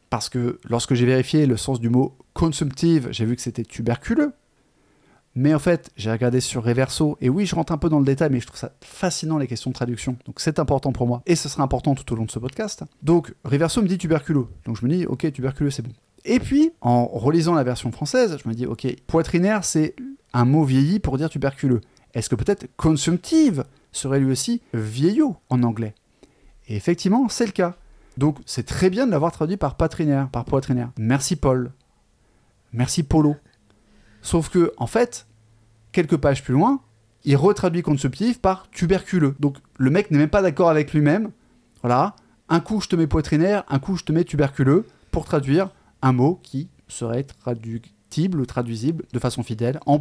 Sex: male